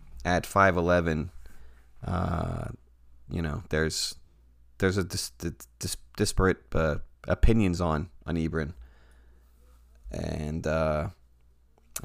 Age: 30-49